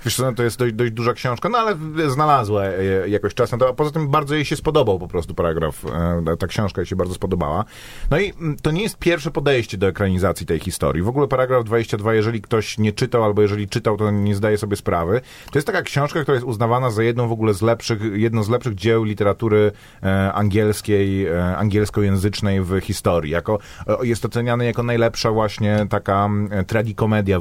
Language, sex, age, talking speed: Polish, male, 30-49, 195 wpm